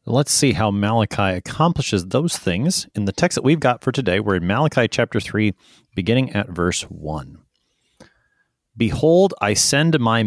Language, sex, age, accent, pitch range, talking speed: English, male, 30-49, American, 95-125 Hz, 165 wpm